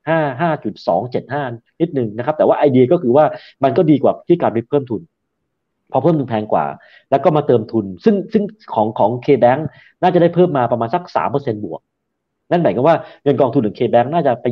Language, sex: Thai, male